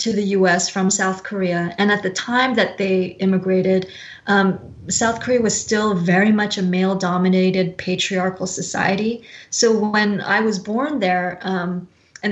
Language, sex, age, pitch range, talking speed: English, female, 20-39, 180-215 Hz, 165 wpm